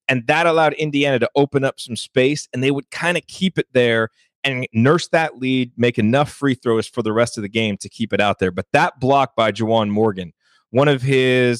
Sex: male